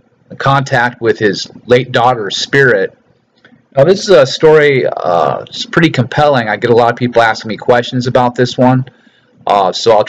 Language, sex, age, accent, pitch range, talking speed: English, male, 40-59, American, 115-150 Hz, 185 wpm